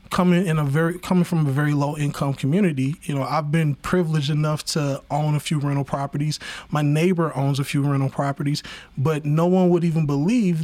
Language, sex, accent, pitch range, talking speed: English, male, American, 145-170 Hz, 205 wpm